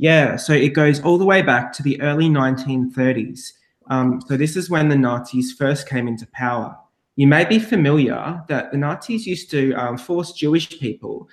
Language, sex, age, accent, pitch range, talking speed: English, male, 20-39, Australian, 130-150 Hz, 190 wpm